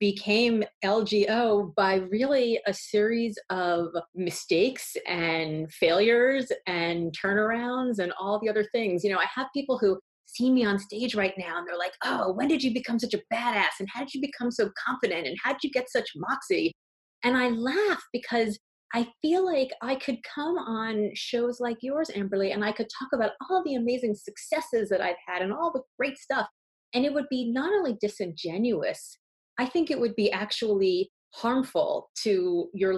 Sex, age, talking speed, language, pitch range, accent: female, 30-49, 185 wpm, English, 195-255 Hz, American